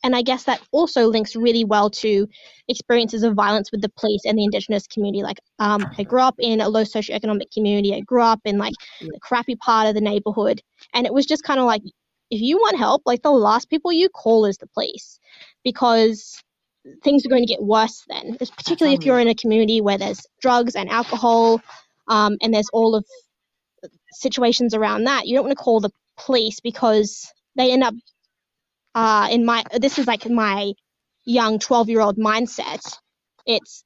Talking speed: 195 wpm